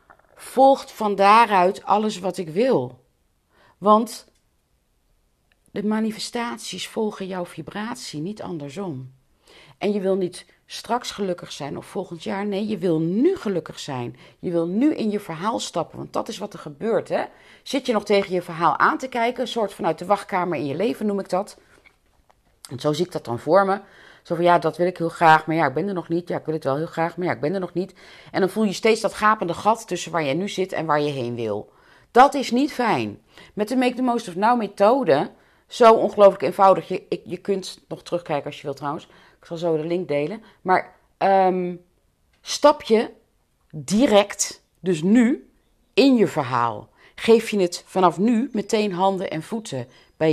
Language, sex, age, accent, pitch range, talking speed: Dutch, female, 40-59, Dutch, 165-215 Hz, 205 wpm